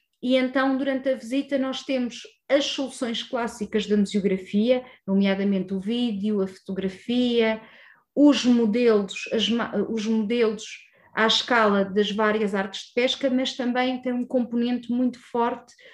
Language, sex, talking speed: Portuguese, female, 130 wpm